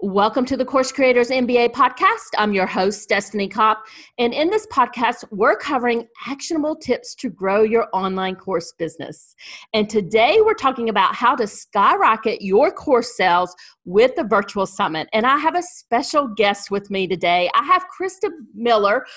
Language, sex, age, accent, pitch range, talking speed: English, female, 40-59, American, 200-310 Hz, 170 wpm